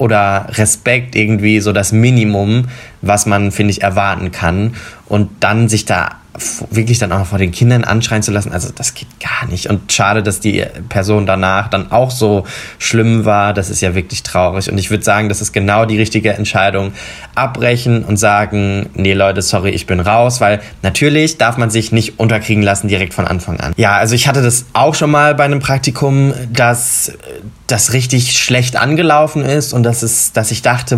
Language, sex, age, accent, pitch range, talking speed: German, male, 20-39, German, 105-125 Hz, 195 wpm